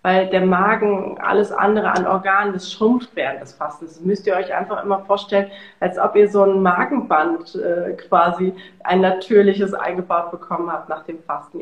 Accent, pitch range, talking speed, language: German, 180-205 Hz, 180 wpm, German